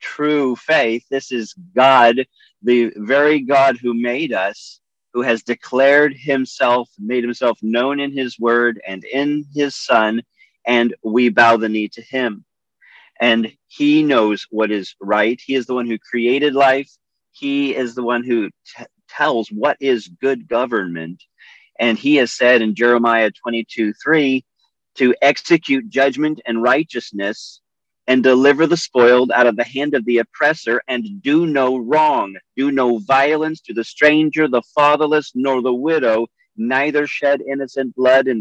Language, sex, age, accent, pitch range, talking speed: English, male, 40-59, American, 115-140 Hz, 155 wpm